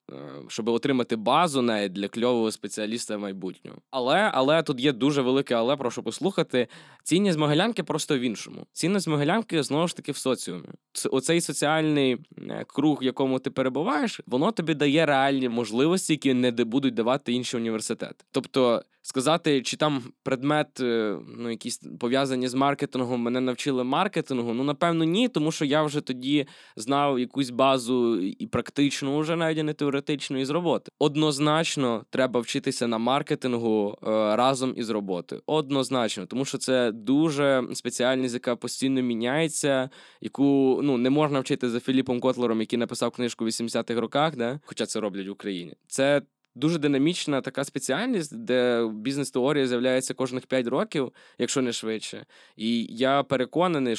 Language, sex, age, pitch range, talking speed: Ukrainian, male, 20-39, 120-150 Hz, 150 wpm